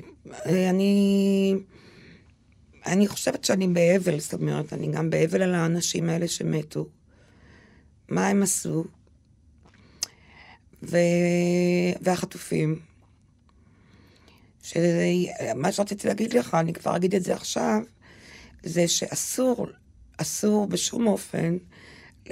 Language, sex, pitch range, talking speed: Hebrew, female, 160-200 Hz, 95 wpm